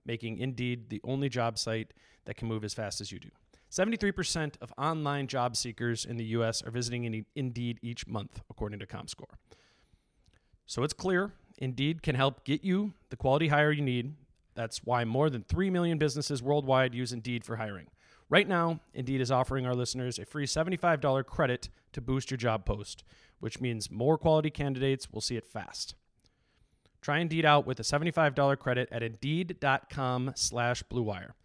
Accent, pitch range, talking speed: American, 115-145 Hz, 170 wpm